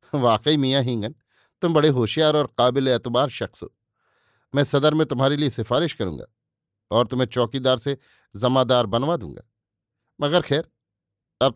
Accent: native